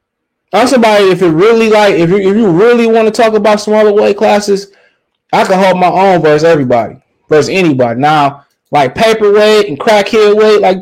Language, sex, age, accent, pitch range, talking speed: English, male, 20-39, American, 140-200 Hz, 185 wpm